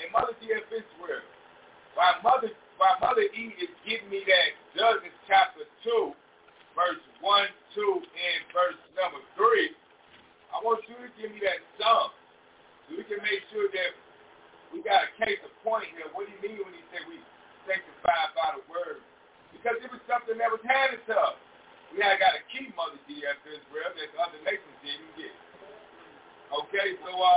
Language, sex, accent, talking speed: English, male, American, 175 wpm